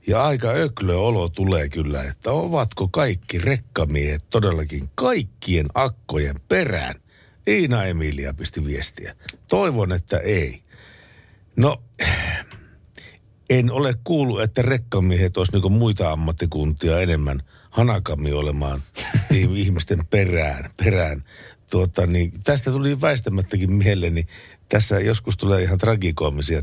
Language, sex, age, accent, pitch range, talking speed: Finnish, male, 60-79, native, 80-115 Hz, 115 wpm